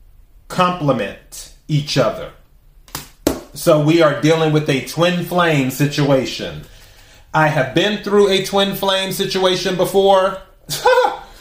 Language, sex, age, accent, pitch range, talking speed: English, male, 30-49, American, 125-175 Hz, 110 wpm